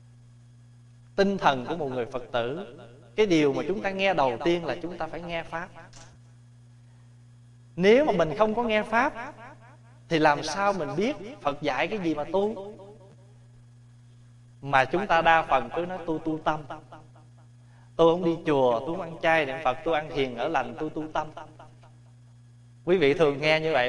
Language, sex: Vietnamese, male